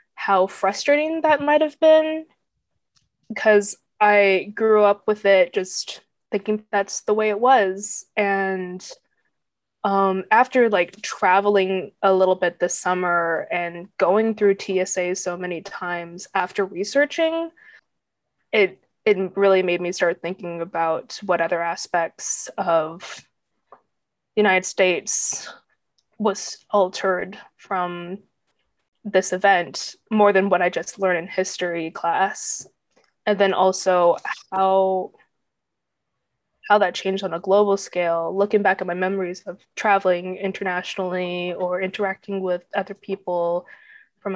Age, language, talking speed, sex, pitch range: 20-39, English, 125 wpm, female, 180-210 Hz